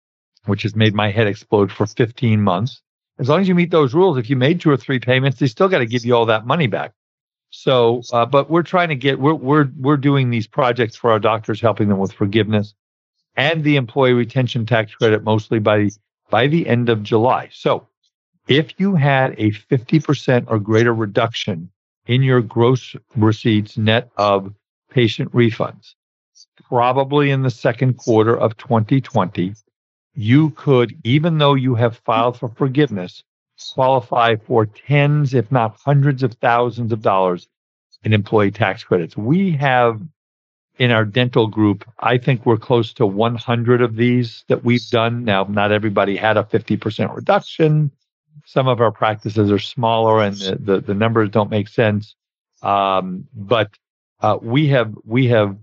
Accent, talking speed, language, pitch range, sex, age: American, 175 wpm, English, 105-135 Hz, male, 50-69